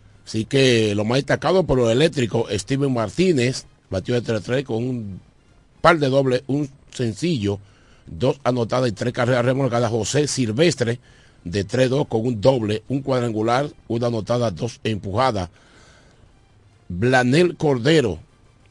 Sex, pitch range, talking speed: male, 115-140 Hz, 135 wpm